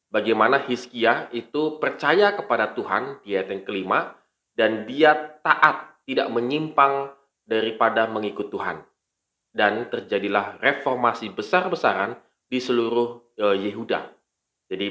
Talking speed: 100 wpm